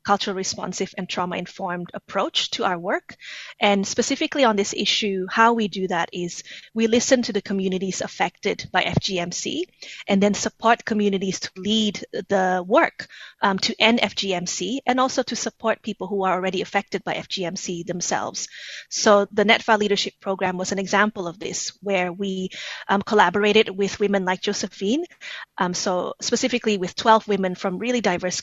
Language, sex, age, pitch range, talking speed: English, female, 20-39, 190-225 Hz, 165 wpm